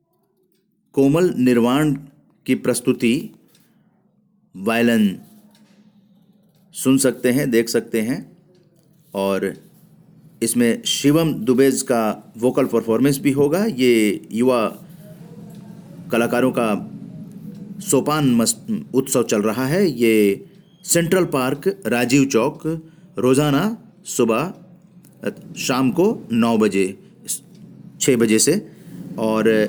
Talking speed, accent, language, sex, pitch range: 90 wpm, native, Hindi, male, 120-175 Hz